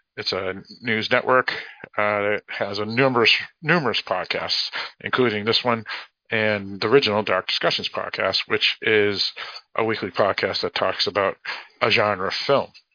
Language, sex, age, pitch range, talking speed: English, male, 50-69, 100-120 Hz, 145 wpm